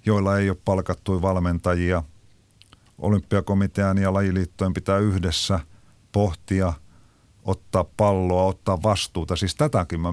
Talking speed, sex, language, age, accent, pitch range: 105 wpm, male, Finnish, 50-69, native, 85-100 Hz